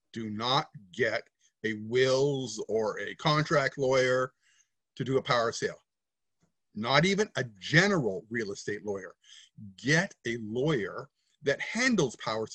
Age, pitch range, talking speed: 50-69, 120-170 Hz, 135 wpm